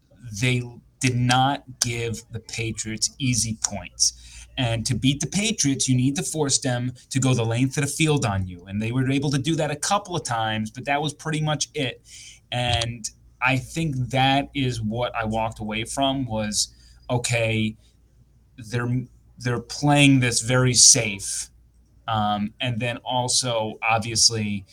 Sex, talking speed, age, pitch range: male, 165 wpm, 20-39, 110-130 Hz